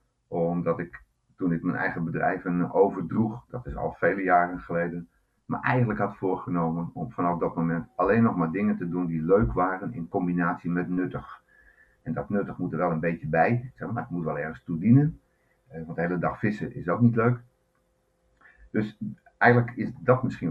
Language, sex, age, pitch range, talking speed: Dutch, male, 50-69, 85-115 Hz, 185 wpm